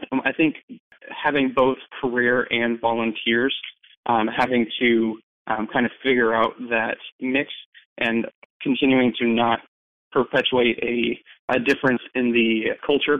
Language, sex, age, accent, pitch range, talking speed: English, male, 20-39, American, 115-135 Hz, 130 wpm